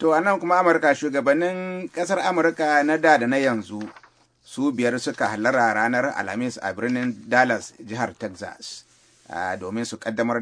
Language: English